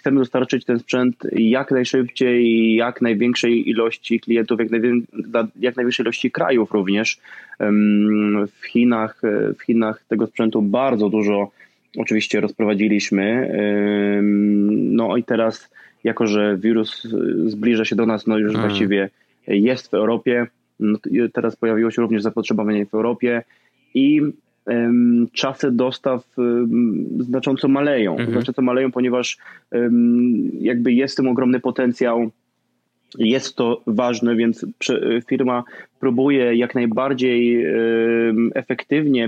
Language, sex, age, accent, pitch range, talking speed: Polish, male, 20-39, native, 110-130 Hz, 110 wpm